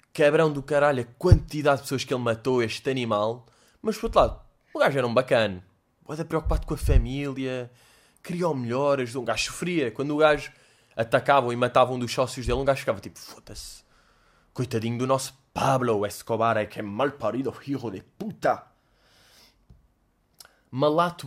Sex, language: male, Portuguese